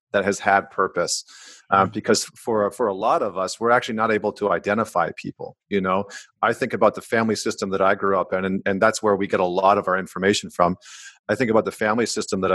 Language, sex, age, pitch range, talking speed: English, male, 40-59, 100-115 Hz, 245 wpm